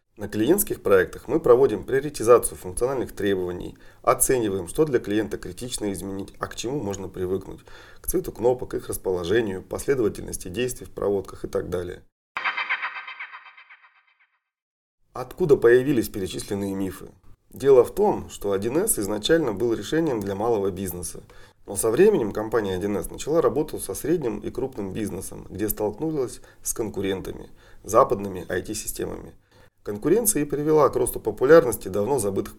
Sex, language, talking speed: male, Russian, 135 wpm